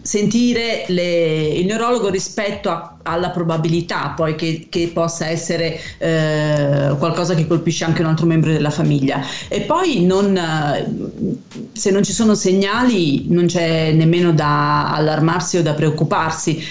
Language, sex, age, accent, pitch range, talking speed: Italian, female, 40-59, native, 155-185 Hz, 125 wpm